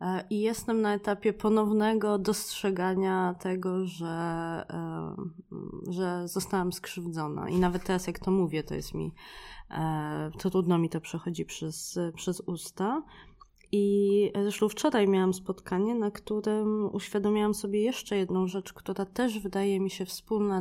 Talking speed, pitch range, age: 135 wpm, 180-205 Hz, 20-39